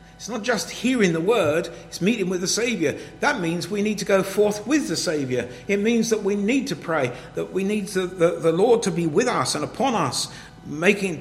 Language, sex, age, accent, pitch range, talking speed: English, male, 50-69, British, 120-165 Hz, 230 wpm